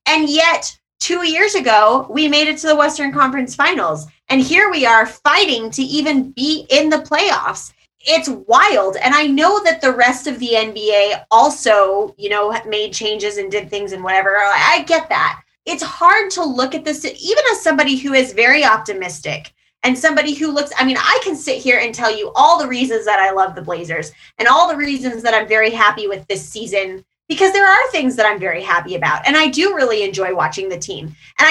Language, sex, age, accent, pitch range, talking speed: English, female, 20-39, American, 205-310 Hz, 210 wpm